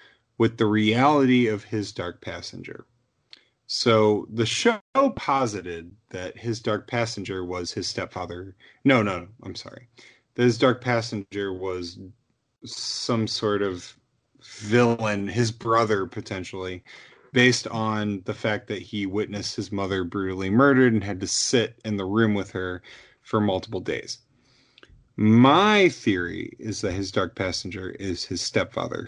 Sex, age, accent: male, 30-49, American